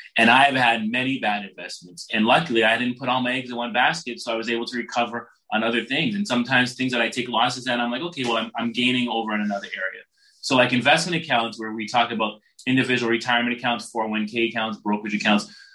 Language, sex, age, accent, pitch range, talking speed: English, male, 30-49, American, 110-130 Hz, 230 wpm